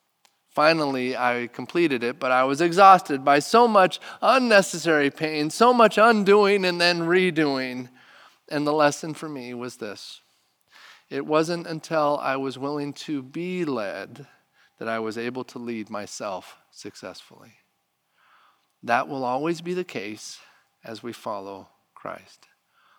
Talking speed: 140 wpm